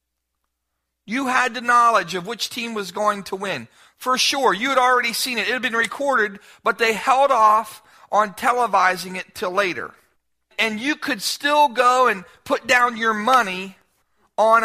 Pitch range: 190-265 Hz